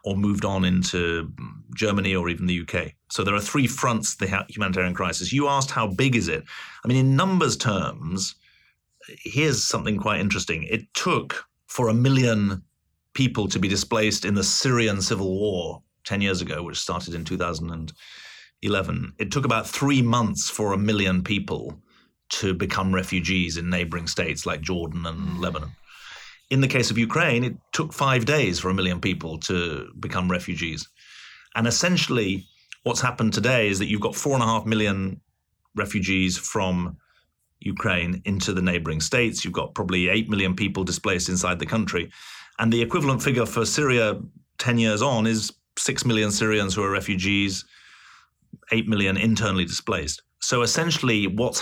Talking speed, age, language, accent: 165 wpm, 30-49, English, British